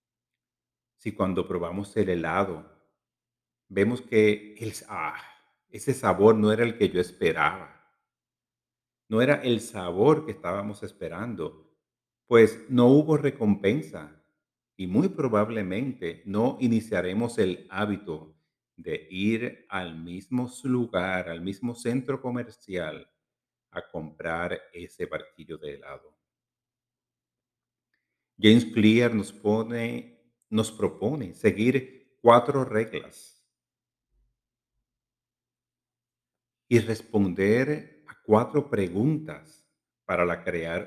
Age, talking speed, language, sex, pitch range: 50-69, 95 wpm, Spanish, male, 100-125 Hz